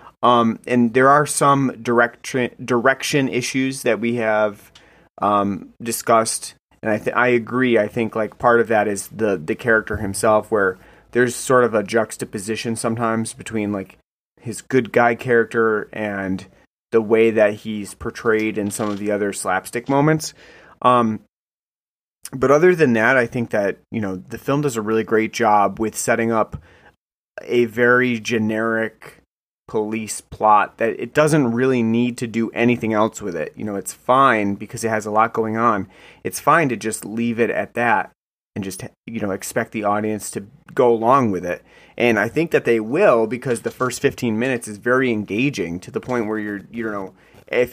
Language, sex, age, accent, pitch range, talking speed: English, male, 30-49, American, 110-125 Hz, 180 wpm